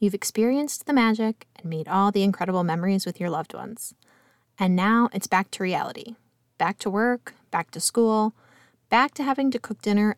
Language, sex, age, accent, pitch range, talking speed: English, female, 20-39, American, 175-235 Hz, 190 wpm